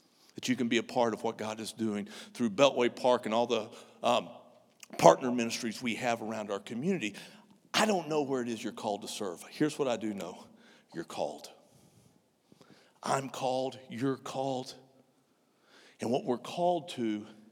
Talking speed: 170 wpm